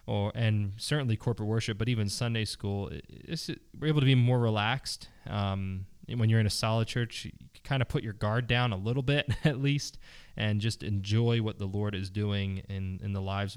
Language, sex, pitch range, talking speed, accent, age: English, male, 100-130 Hz, 210 wpm, American, 20-39